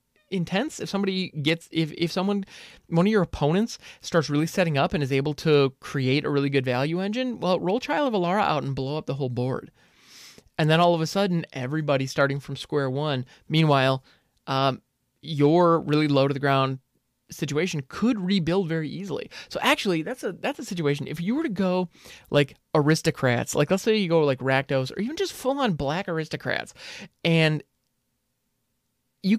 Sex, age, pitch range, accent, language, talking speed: male, 20-39, 140-190 Hz, American, English, 185 wpm